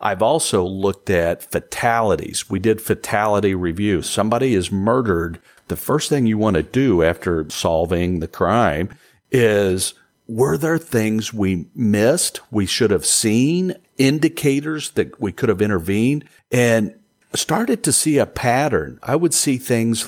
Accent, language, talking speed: American, English, 145 wpm